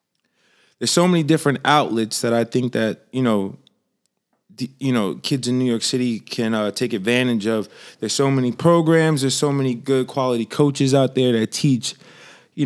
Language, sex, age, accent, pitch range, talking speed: English, male, 20-39, American, 115-135 Hz, 185 wpm